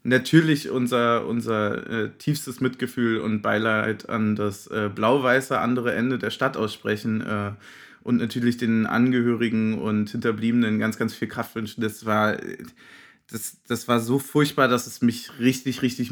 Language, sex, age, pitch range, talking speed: German, male, 20-39, 110-125 Hz, 155 wpm